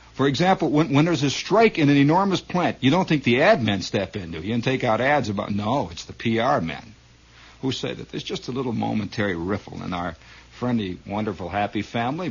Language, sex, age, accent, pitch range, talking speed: English, male, 60-79, American, 105-145 Hz, 220 wpm